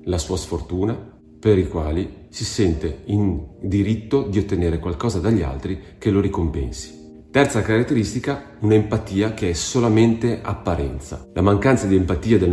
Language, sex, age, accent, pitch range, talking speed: Italian, male, 40-59, native, 85-110 Hz, 145 wpm